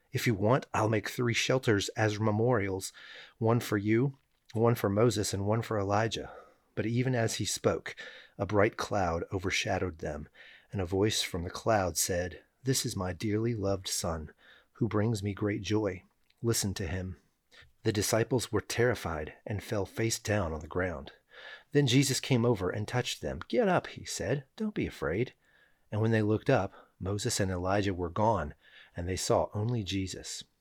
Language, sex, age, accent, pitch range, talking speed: English, male, 30-49, American, 95-115 Hz, 175 wpm